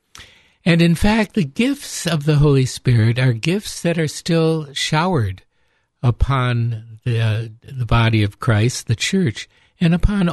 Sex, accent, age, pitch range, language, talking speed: male, American, 60-79, 115-155 Hz, English, 145 wpm